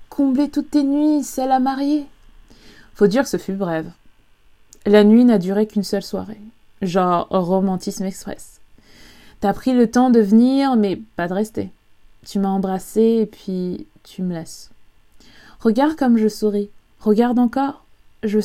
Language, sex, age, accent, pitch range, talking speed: French, female, 20-39, French, 205-250 Hz, 155 wpm